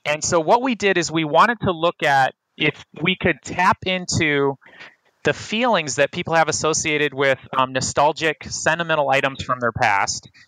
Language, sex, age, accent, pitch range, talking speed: English, male, 30-49, American, 135-160 Hz, 170 wpm